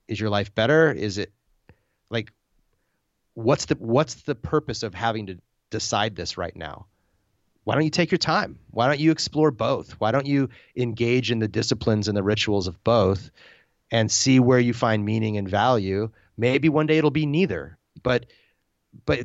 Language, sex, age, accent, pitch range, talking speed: English, male, 30-49, American, 105-130 Hz, 180 wpm